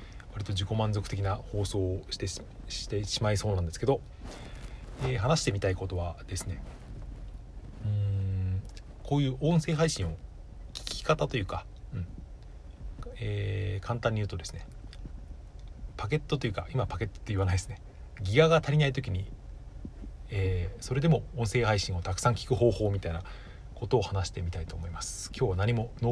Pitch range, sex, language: 95-125 Hz, male, Japanese